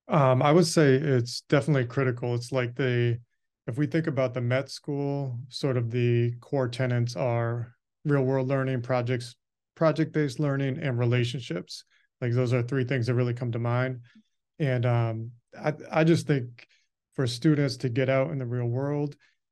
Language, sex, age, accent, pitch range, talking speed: English, male, 30-49, American, 120-140 Hz, 170 wpm